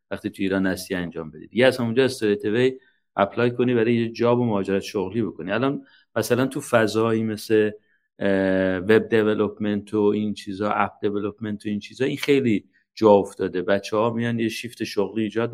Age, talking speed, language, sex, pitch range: 50-69, 175 wpm, Persian, male, 100-125 Hz